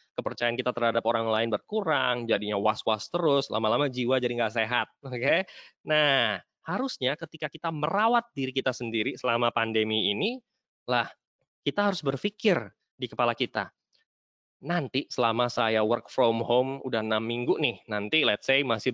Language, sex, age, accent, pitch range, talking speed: English, male, 20-39, Indonesian, 115-150 Hz, 150 wpm